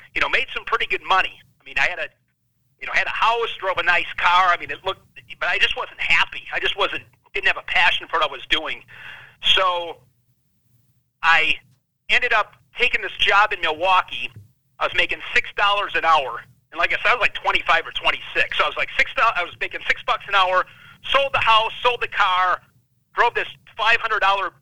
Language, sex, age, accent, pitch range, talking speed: English, male, 40-59, American, 155-195 Hz, 215 wpm